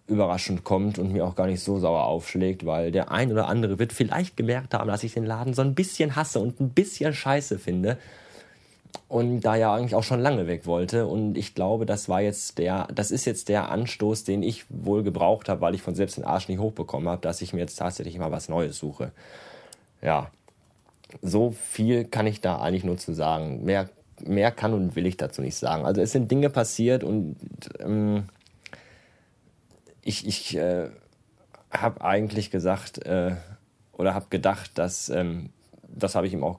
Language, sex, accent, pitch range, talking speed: German, male, German, 95-115 Hz, 195 wpm